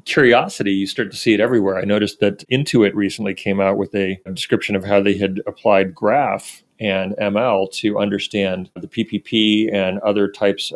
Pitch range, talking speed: 100-115 Hz, 185 wpm